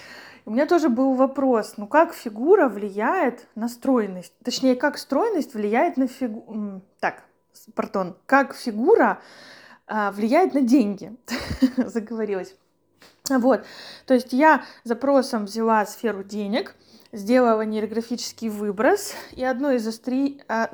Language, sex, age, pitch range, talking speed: Russian, female, 20-39, 225-275 Hz, 115 wpm